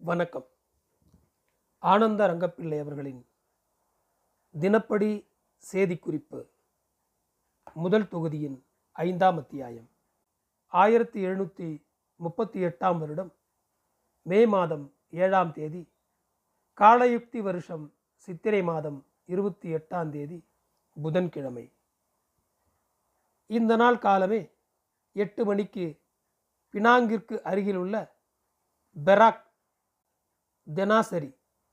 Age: 40-59